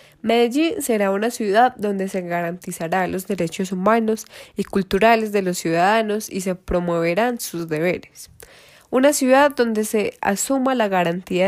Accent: Colombian